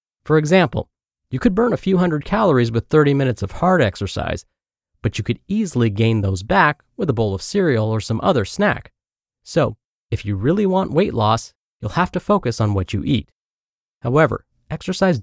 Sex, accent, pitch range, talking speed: male, American, 110-165 Hz, 190 wpm